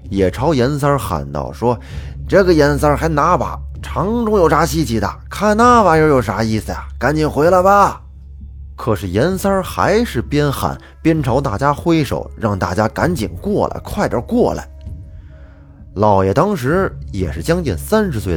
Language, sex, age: Chinese, male, 20-39